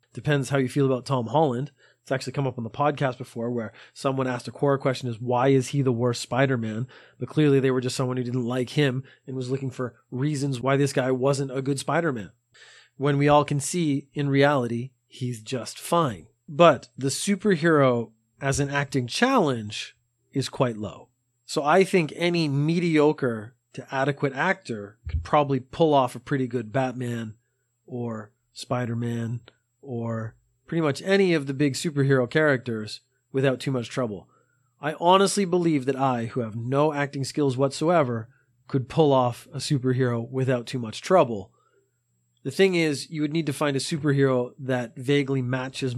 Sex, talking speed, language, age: male, 175 wpm, English, 30-49